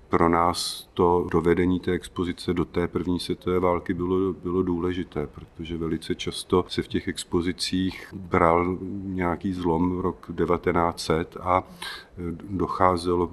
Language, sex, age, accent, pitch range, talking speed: Czech, male, 40-59, native, 85-95 Hz, 130 wpm